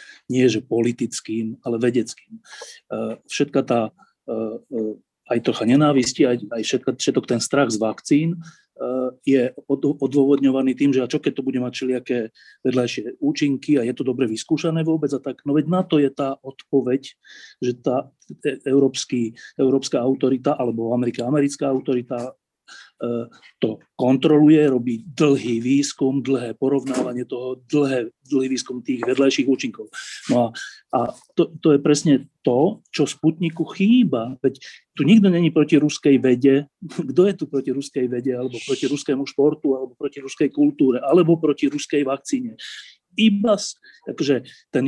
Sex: male